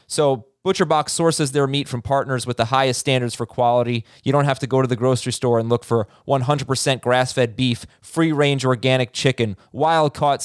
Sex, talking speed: male, 185 wpm